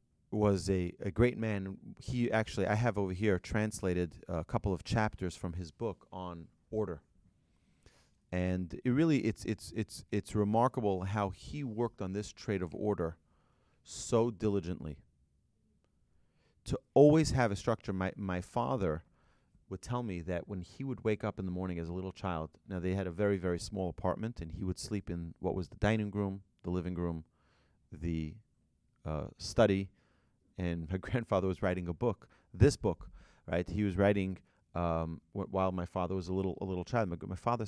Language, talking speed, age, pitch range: English, 185 wpm, 30-49, 90-110 Hz